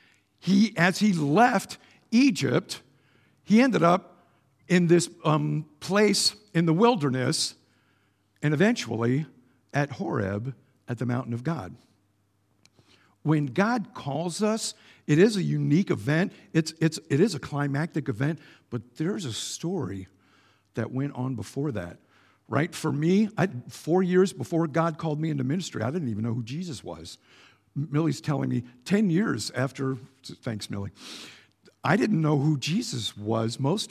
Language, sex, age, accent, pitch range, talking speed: English, male, 50-69, American, 120-170 Hz, 145 wpm